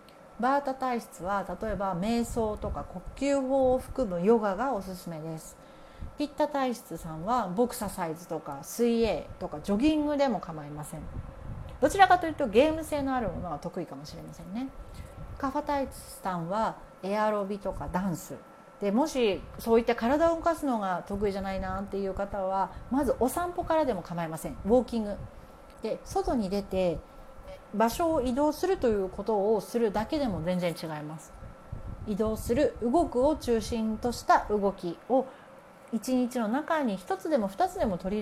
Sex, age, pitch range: female, 40-59, 185-275 Hz